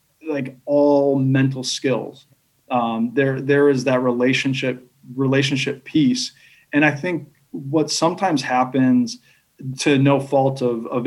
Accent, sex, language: American, male, English